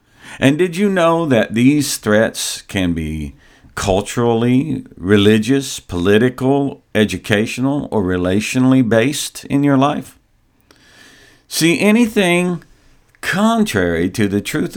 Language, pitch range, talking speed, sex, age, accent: English, 95-140 Hz, 100 wpm, male, 50-69, American